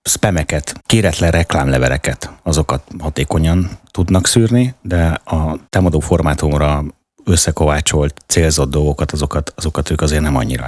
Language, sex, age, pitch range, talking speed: Hungarian, male, 30-49, 70-85 Hz, 110 wpm